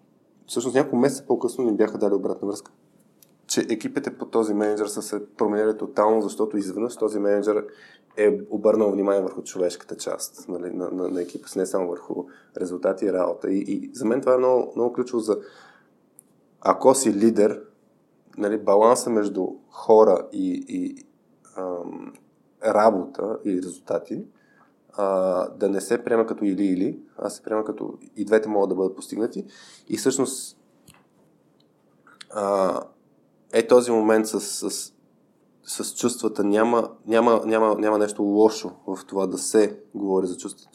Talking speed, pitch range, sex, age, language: 150 wpm, 100-115 Hz, male, 20-39, Bulgarian